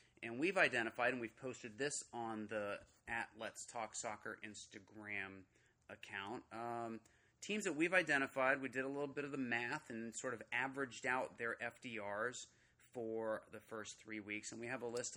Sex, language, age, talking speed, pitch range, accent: male, English, 30-49, 180 wpm, 110-140 Hz, American